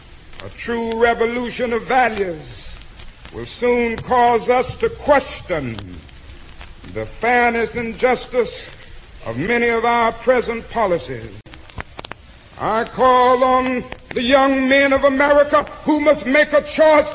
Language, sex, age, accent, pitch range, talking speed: English, male, 60-79, American, 220-285 Hz, 120 wpm